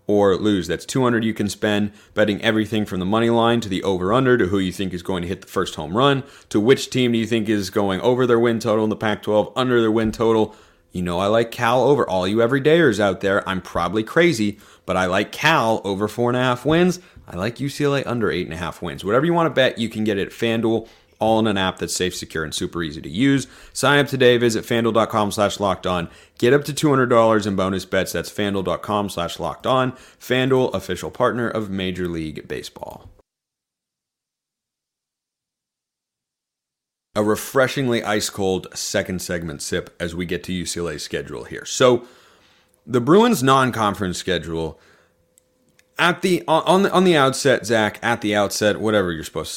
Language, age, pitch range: English, 30-49, 95-130 Hz